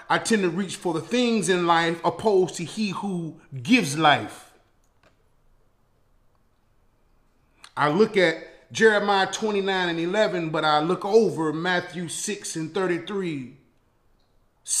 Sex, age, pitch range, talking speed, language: male, 30-49, 160-195 Hz, 120 wpm, English